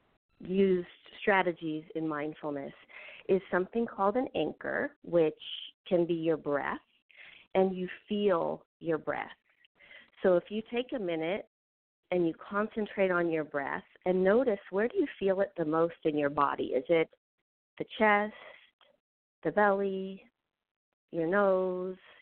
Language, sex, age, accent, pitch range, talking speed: English, female, 40-59, American, 160-200 Hz, 140 wpm